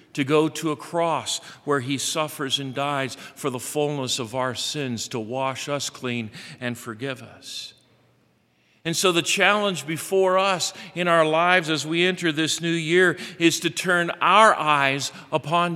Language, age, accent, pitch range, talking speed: English, 50-69, American, 140-175 Hz, 170 wpm